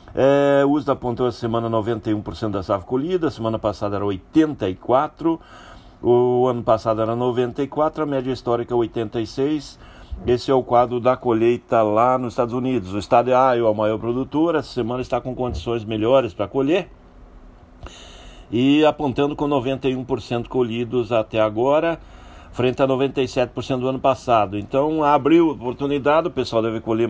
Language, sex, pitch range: Portuguese, male, 105-130 Hz